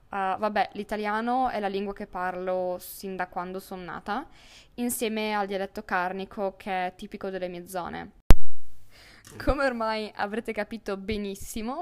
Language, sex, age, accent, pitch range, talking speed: Italian, female, 20-39, native, 195-235 Hz, 140 wpm